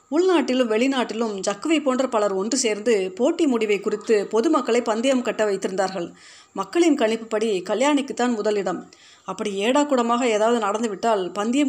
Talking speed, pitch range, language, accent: 120 wpm, 205-255 Hz, Tamil, native